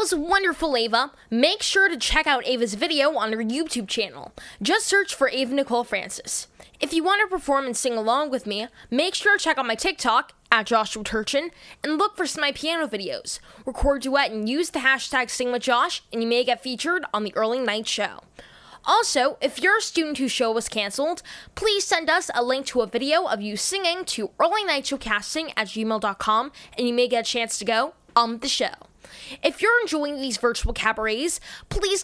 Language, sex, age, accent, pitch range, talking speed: English, female, 10-29, American, 235-330 Hz, 200 wpm